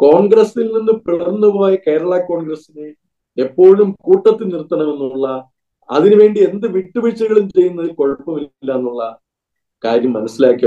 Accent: native